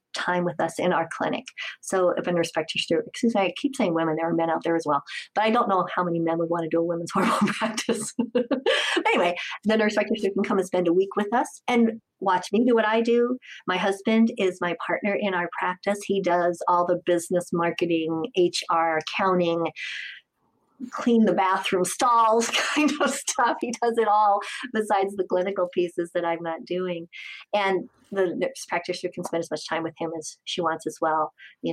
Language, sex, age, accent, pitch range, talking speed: English, female, 50-69, American, 165-200 Hz, 210 wpm